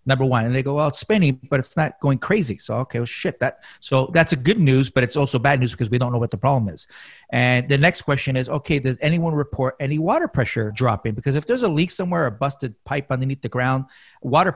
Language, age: English, 40-59